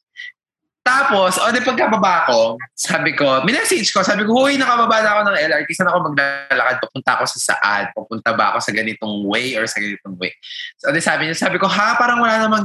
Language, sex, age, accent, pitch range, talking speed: Filipino, male, 20-39, native, 130-205 Hz, 210 wpm